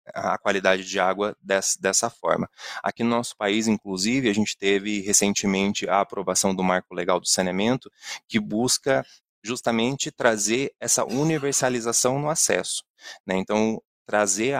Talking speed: 140 wpm